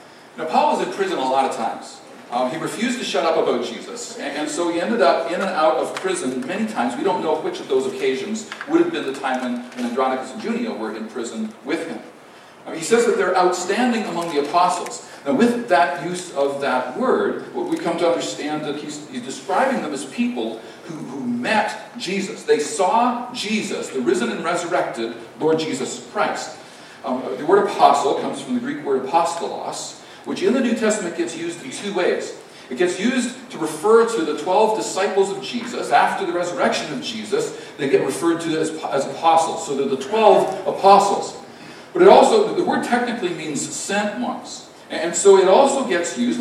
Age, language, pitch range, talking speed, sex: 50-69, English, 165-250 Hz, 205 wpm, male